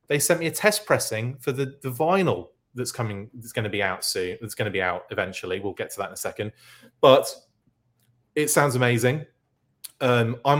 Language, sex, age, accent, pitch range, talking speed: English, male, 30-49, British, 110-135 Hz, 210 wpm